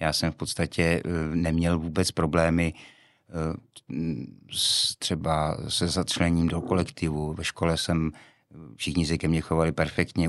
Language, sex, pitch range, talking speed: Czech, male, 80-90 Hz, 120 wpm